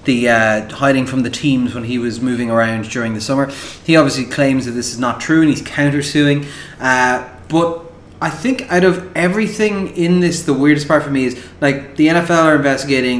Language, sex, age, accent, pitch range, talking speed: English, male, 30-49, Irish, 120-150 Hz, 205 wpm